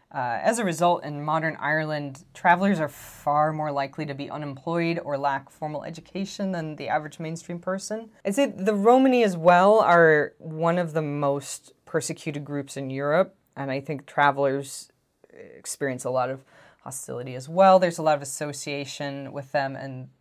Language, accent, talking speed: English, American, 170 wpm